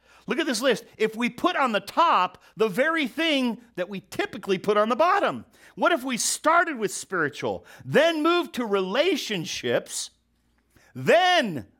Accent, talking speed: American, 160 wpm